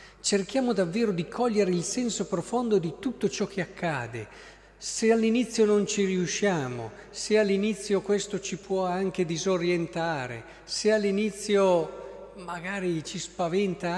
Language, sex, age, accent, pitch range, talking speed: Italian, male, 50-69, native, 145-195 Hz, 125 wpm